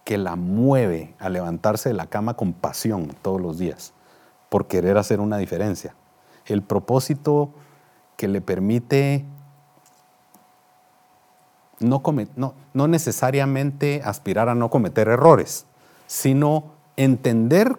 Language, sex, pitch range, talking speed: Spanish, male, 105-145 Hz, 115 wpm